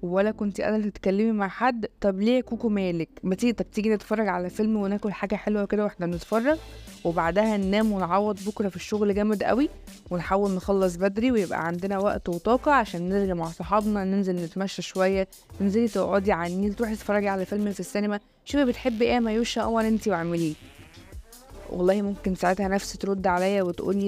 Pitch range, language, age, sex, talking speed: 185-220 Hz, Arabic, 20-39, female, 170 wpm